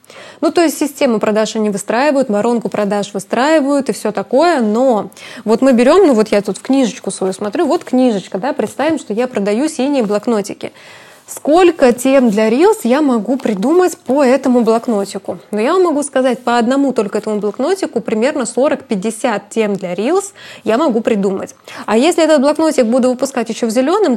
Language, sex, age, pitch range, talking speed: Russian, female, 20-39, 215-280 Hz, 175 wpm